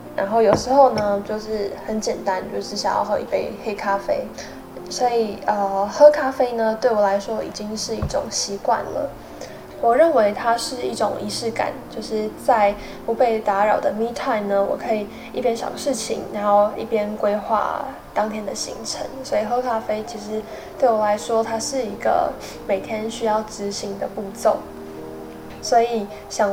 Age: 10-29